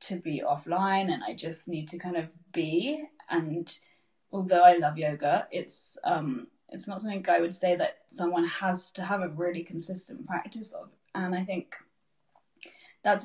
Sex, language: female, English